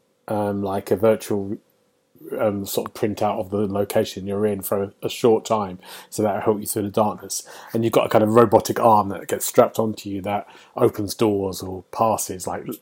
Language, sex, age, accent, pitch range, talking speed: English, male, 30-49, British, 95-115 Hz, 210 wpm